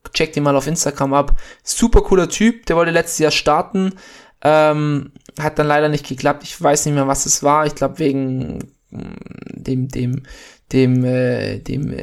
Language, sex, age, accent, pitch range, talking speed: German, male, 20-39, German, 140-170 Hz, 175 wpm